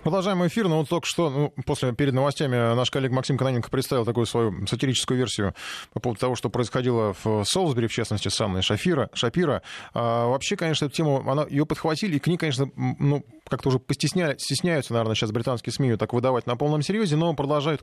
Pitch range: 110-145 Hz